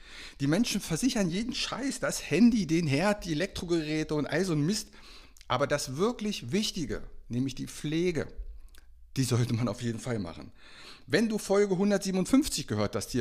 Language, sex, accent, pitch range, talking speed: German, male, German, 105-155 Hz, 170 wpm